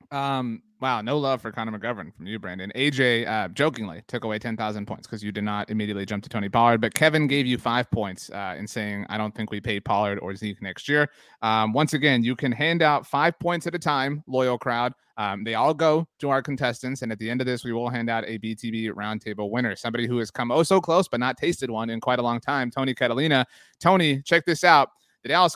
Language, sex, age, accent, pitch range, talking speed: English, male, 30-49, American, 115-160 Hz, 245 wpm